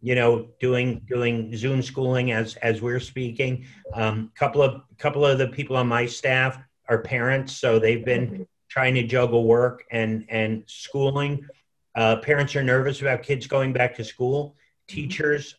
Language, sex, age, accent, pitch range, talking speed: English, male, 40-59, American, 120-150 Hz, 165 wpm